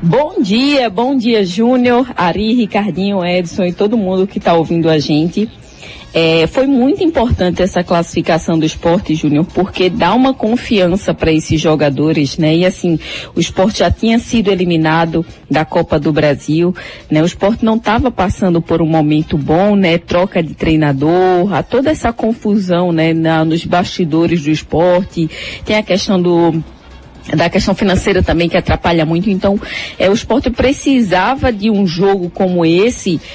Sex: female